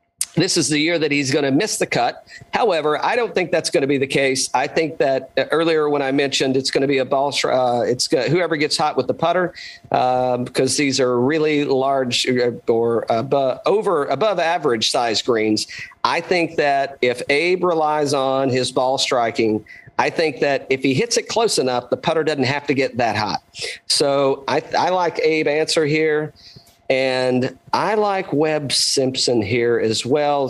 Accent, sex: American, male